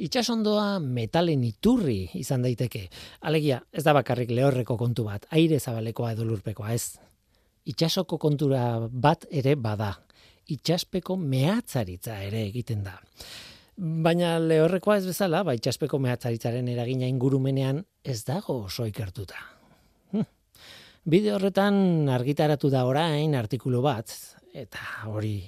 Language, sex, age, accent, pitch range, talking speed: Spanish, male, 40-59, Spanish, 120-165 Hz, 120 wpm